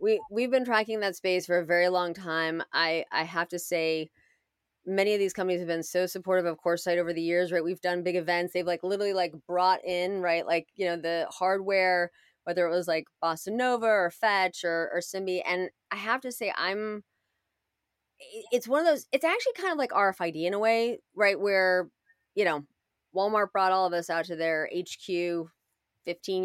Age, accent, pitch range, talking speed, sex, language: 20-39, American, 175-215 Hz, 205 wpm, female, English